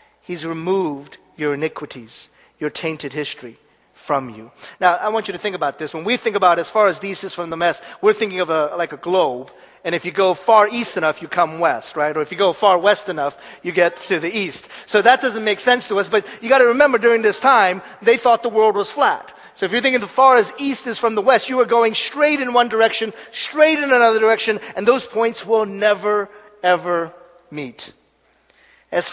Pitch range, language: 165-230 Hz, Korean